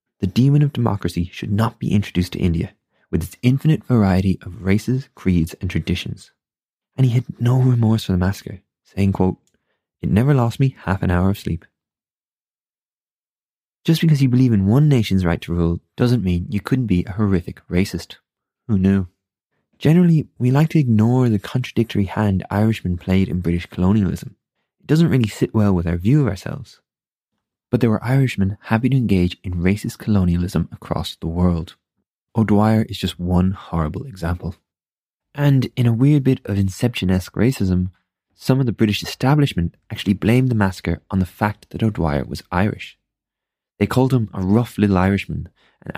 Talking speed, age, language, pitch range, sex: 170 wpm, 20-39, English, 90-120 Hz, male